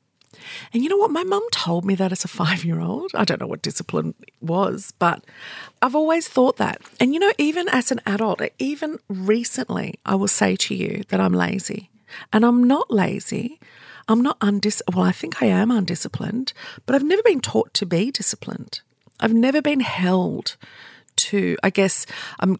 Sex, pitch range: female, 175-225 Hz